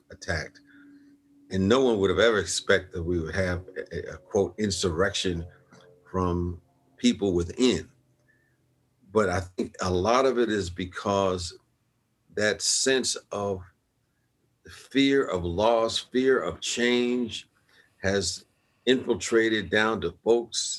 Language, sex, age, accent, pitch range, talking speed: English, male, 50-69, American, 90-115 Hz, 125 wpm